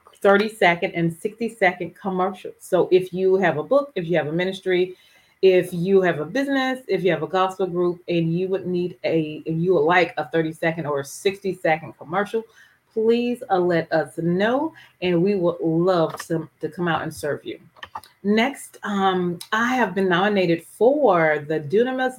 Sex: female